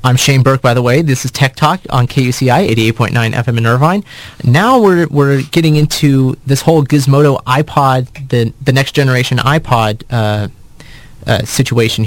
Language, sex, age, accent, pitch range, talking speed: English, male, 30-49, American, 115-140 Hz, 165 wpm